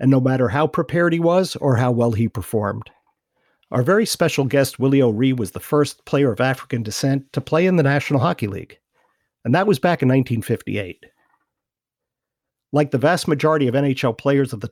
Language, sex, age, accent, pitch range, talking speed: English, male, 50-69, American, 120-160 Hz, 190 wpm